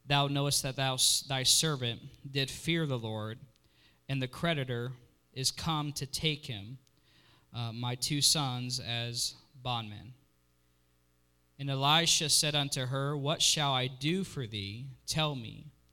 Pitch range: 125-155 Hz